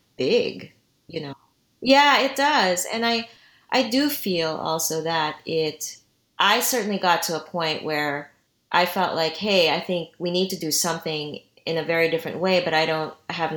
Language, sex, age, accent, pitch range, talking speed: English, female, 30-49, American, 150-180 Hz, 180 wpm